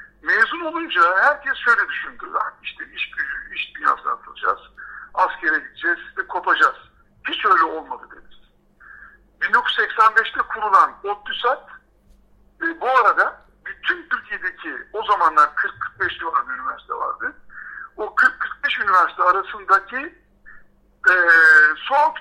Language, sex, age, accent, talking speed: Turkish, male, 60-79, native, 105 wpm